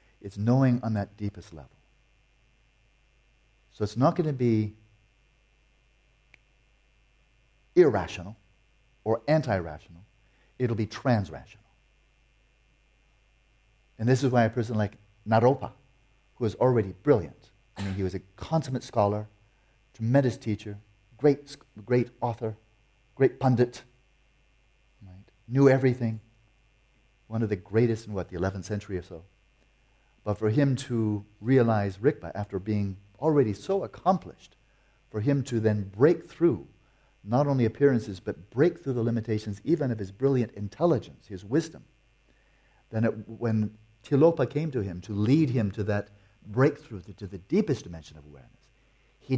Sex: male